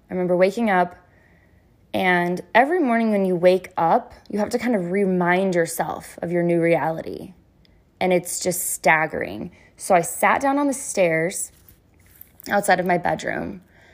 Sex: female